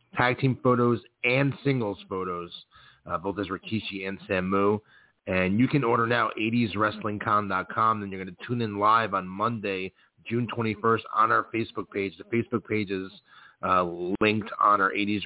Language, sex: English, male